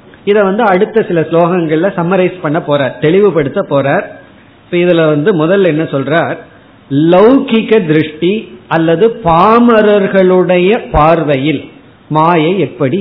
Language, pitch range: Tamil, 150-190 Hz